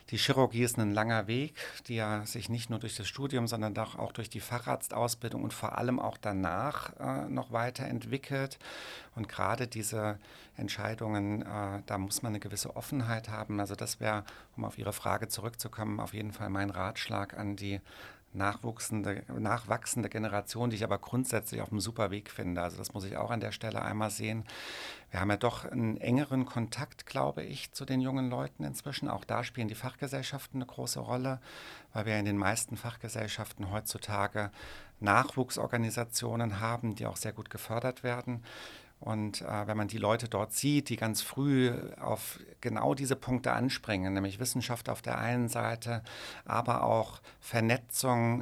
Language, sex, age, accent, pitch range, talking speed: German, male, 50-69, German, 105-120 Hz, 170 wpm